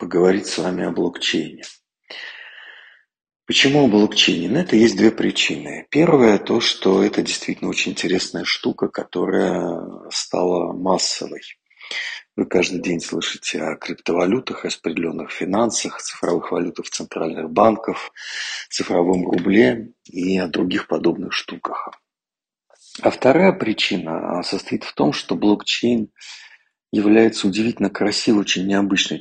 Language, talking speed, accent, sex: Russian, 115 wpm, native, male